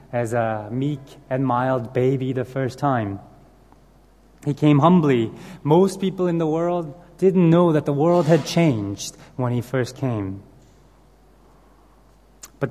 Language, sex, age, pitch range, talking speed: English, male, 30-49, 130-180 Hz, 135 wpm